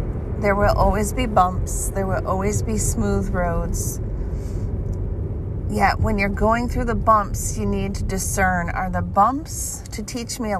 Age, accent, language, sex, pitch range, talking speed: 30-49, American, English, female, 85-105 Hz, 165 wpm